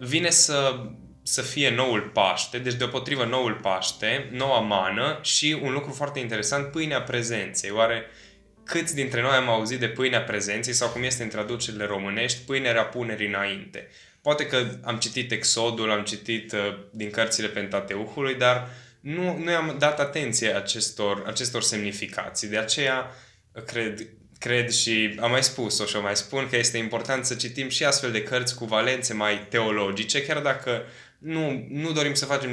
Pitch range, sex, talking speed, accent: 105-130 Hz, male, 160 wpm, native